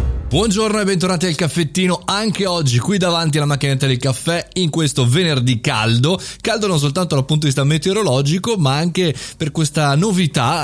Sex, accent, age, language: male, native, 30-49, Italian